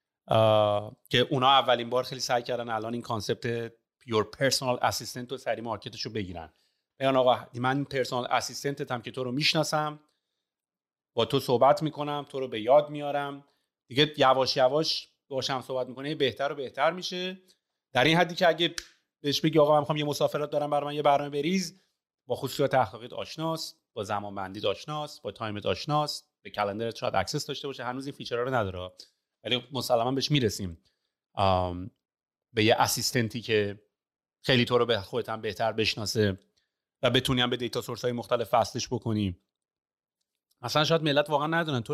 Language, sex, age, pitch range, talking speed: Persian, male, 30-49, 120-150 Hz, 155 wpm